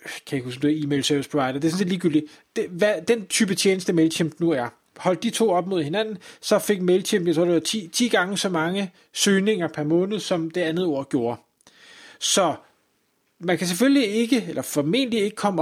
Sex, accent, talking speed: male, native, 190 wpm